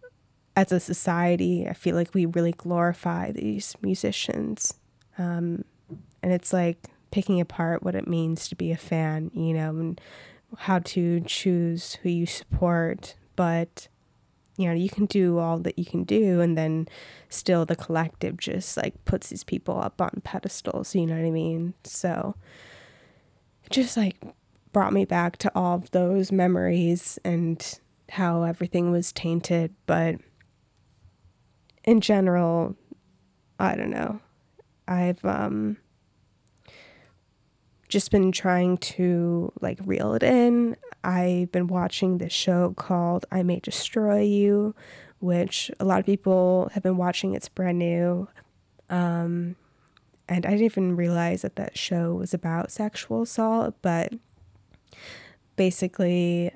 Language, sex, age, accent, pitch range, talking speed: English, female, 20-39, American, 165-185 Hz, 140 wpm